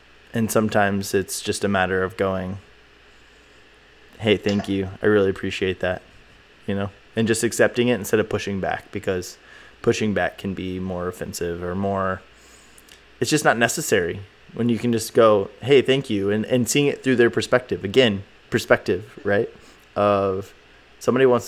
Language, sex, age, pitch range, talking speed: English, male, 20-39, 95-115 Hz, 165 wpm